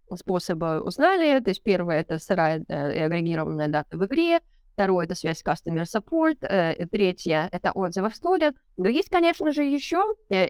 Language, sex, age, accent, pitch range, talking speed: Russian, female, 20-39, native, 180-230 Hz, 195 wpm